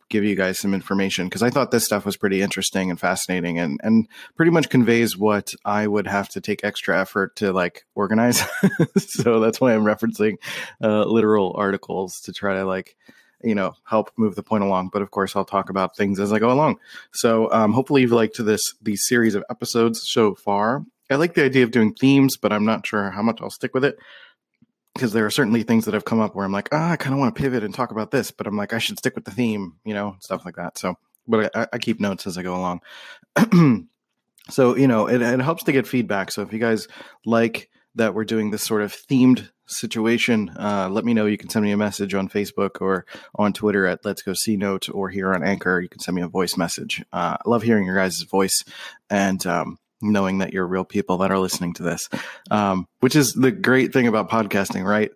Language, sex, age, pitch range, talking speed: English, male, 30-49, 100-115 Hz, 235 wpm